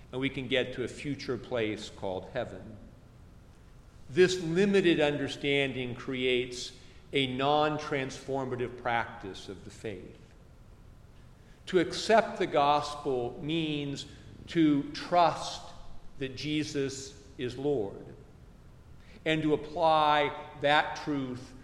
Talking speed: 100 wpm